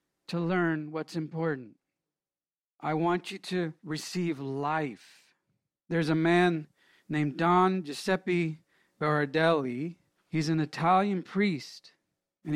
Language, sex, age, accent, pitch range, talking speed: English, male, 50-69, American, 160-230 Hz, 105 wpm